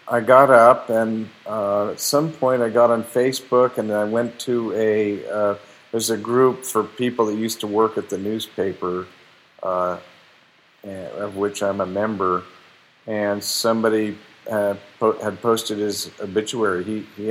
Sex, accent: male, American